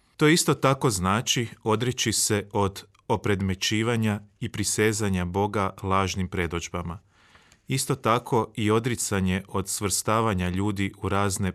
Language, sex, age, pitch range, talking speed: Croatian, male, 30-49, 95-110 Hz, 115 wpm